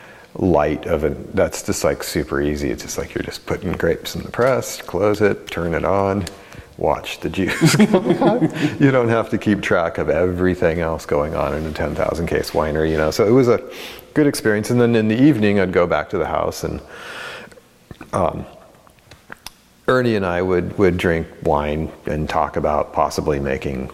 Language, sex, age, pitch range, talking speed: English, male, 40-59, 80-105 Hz, 185 wpm